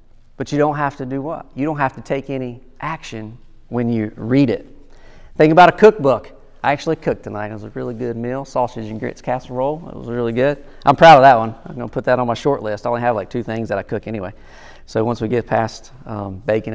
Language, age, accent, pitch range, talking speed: English, 40-59, American, 120-150 Hz, 255 wpm